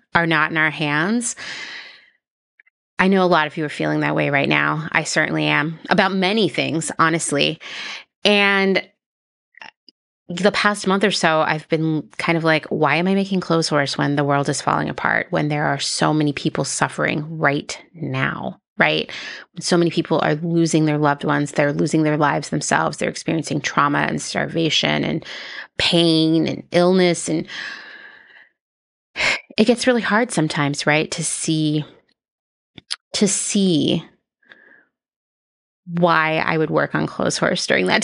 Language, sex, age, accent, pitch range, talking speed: English, female, 30-49, American, 150-190 Hz, 155 wpm